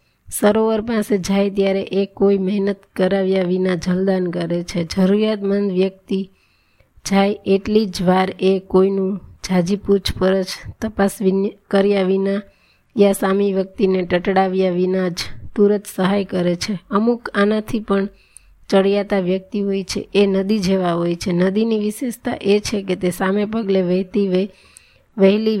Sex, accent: female, native